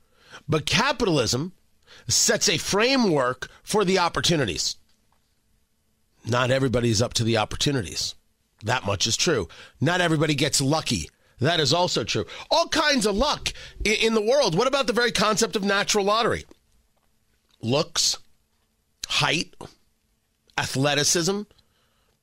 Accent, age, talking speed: American, 40-59, 120 wpm